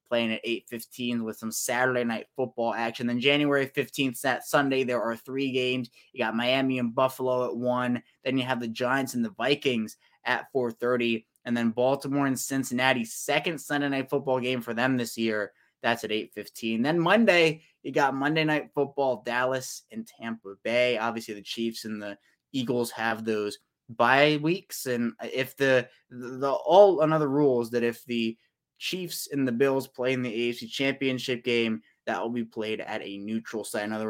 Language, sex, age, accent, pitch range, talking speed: English, male, 20-39, American, 115-135 Hz, 180 wpm